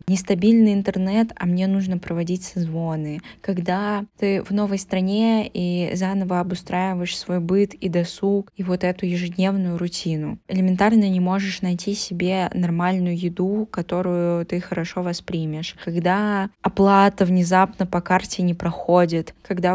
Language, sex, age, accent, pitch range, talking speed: Russian, female, 20-39, native, 175-200 Hz, 130 wpm